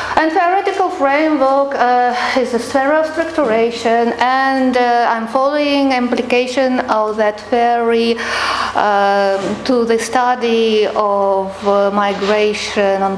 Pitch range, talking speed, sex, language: 210-260 Hz, 120 wpm, female, English